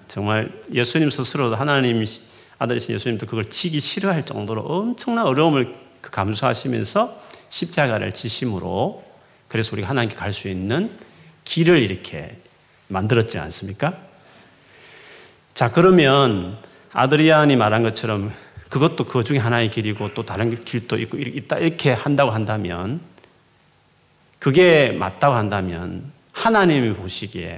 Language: Korean